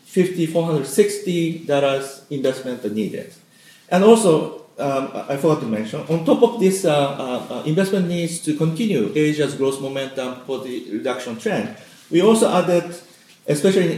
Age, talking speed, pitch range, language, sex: 40-59, 145 wpm, 130-175 Hz, English, male